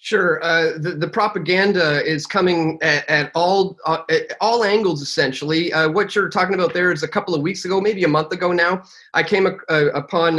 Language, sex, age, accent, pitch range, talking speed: English, male, 30-49, American, 150-190 Hz, 210 wpm